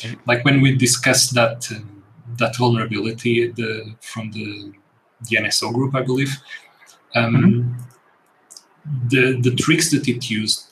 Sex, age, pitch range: male, 30-49, 110-125 Hz